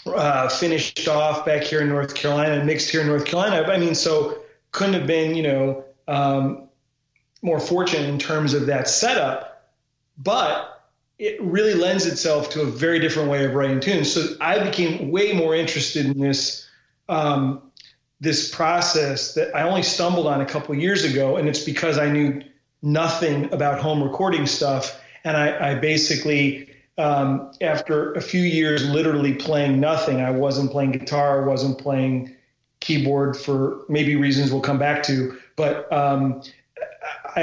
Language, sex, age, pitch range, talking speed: English, male, 40-59, 140-160 Hz, 165 wpm